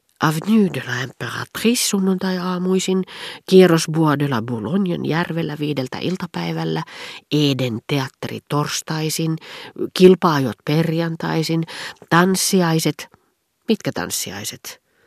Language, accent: Finnish, native